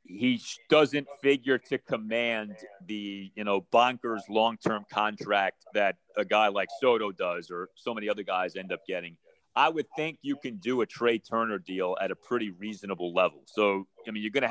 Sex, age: male, 30-49